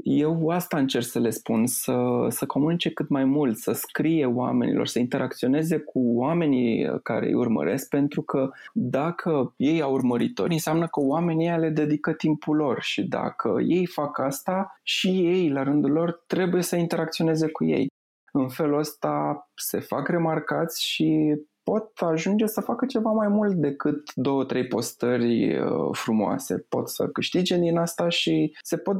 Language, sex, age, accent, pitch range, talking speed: Romanian, male, 20-39, native, 135-175 Hz, 160 wpm